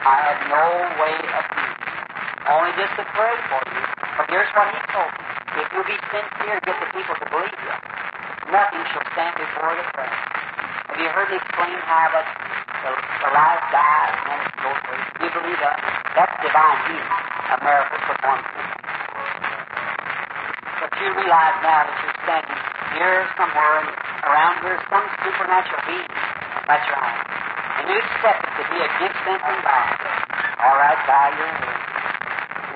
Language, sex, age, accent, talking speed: English, male, 50-69, American, 160 wpm